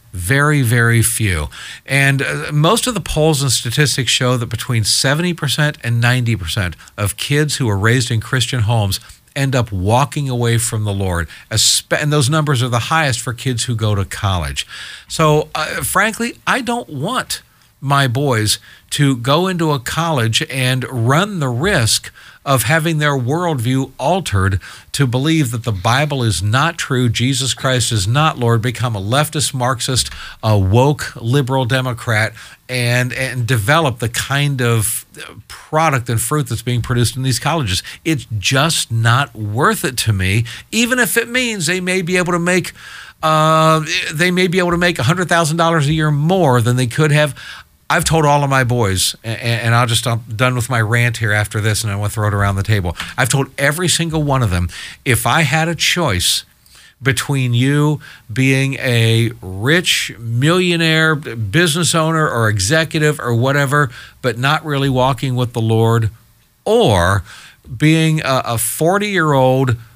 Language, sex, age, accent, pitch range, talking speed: English, male, 50-69, American, 115-150 Hz, 170 wpm